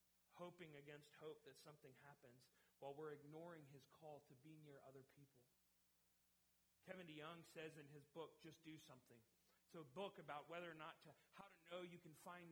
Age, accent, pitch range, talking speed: 40-59, American, 135-180 Hz, 185 wpm